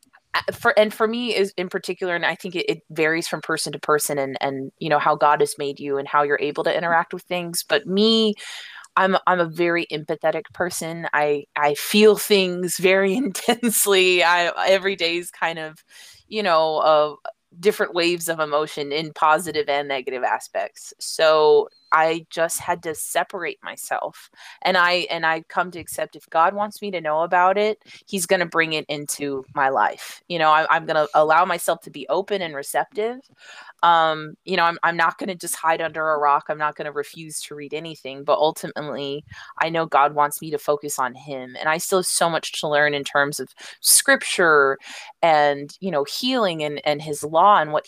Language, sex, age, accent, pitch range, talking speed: English, female, 20-39, American, 150-185 Hz, 205 wpm